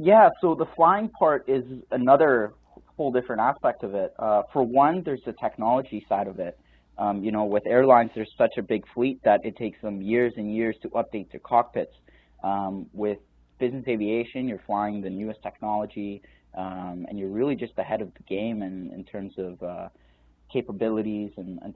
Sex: male